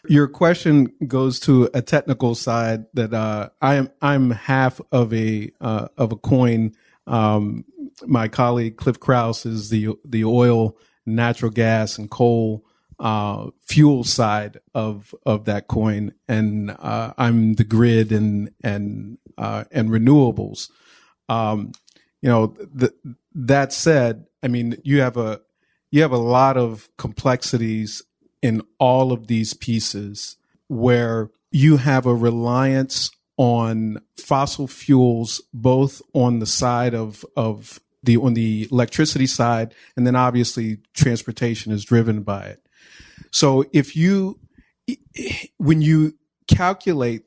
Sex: male